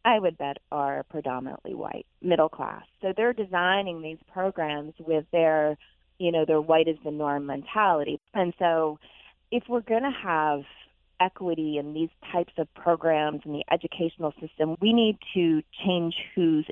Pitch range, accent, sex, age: 140-180 Hz, American, female, 30-49